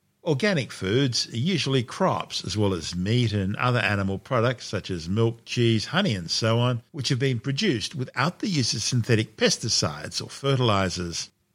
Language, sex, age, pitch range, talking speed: English, male, 50-69, 100-135 Hz, 170 wpm